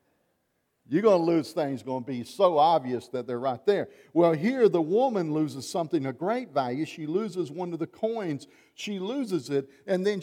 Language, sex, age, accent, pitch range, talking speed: English, male, 50-69, American, 135-185 Hz, 200 wpm